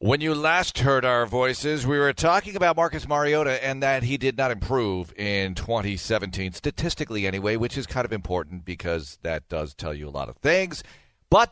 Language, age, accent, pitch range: English, 40-59, American, 110-155 Hz